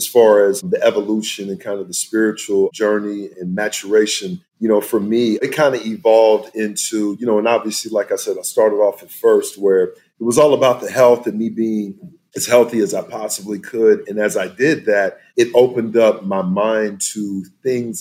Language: English